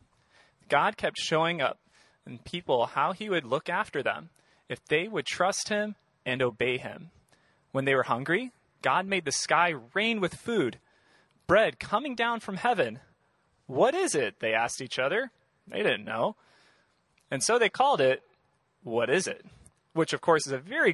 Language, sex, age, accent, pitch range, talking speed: English, male, 30-49, American, 130-195 Hz, 170 wpm